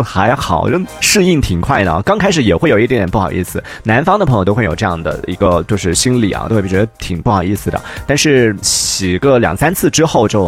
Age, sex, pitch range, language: 30-49, male, 95-140 Hz, Chinese